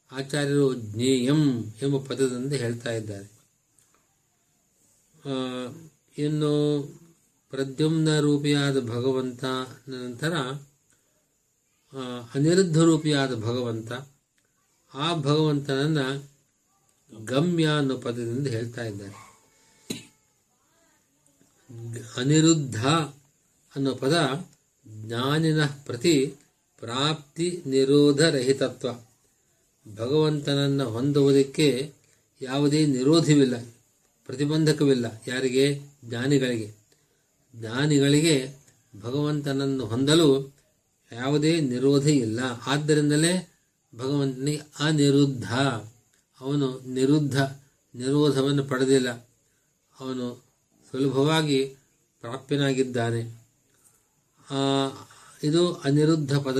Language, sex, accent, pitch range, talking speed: Kannada, male, native, 130-150 Hz, 40 wpm